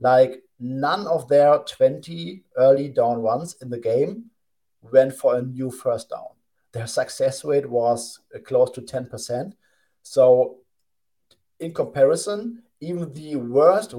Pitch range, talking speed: 120-165 Hz, 130 wpm